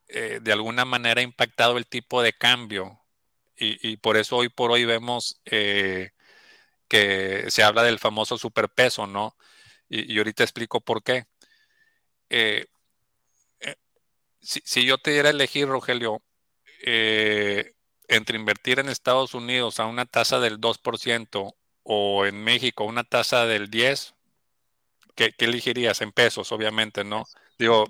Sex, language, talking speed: male, Spanish, 145 wpm